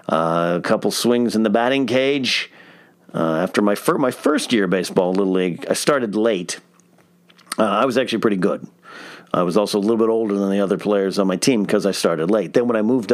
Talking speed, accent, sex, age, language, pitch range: 230 wpm, American, male, 40-59, English, 105-130 Hz